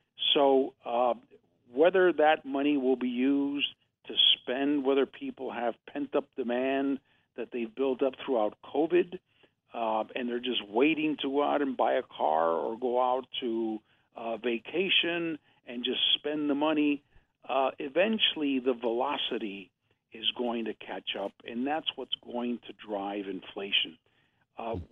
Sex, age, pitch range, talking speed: male, 50-69, 115-140 Hz, 145 wpm